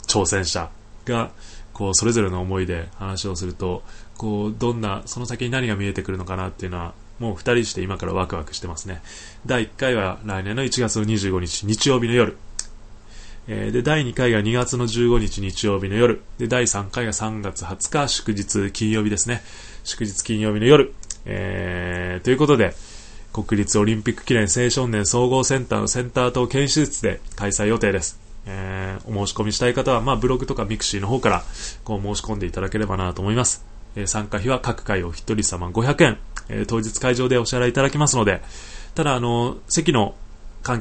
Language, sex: Japanese, male